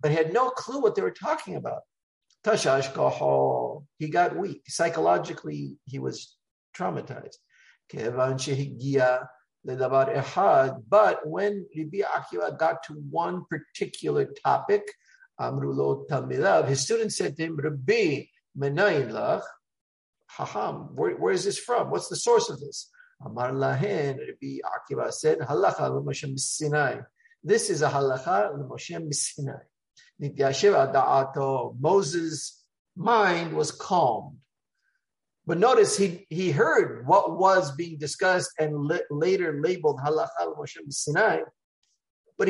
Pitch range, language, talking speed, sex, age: 140-200 Hz, English, 100 wpm, male, 50-69